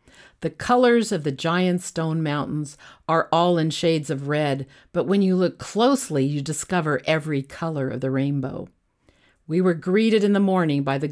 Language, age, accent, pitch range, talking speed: English, 50-69, American, 140-180 Hz, 180 wpm